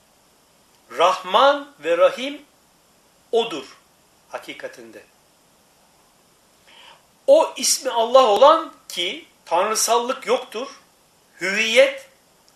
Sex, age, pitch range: male, 60-79, 210-280 Hz